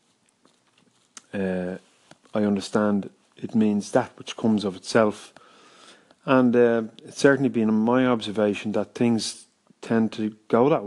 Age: 30-49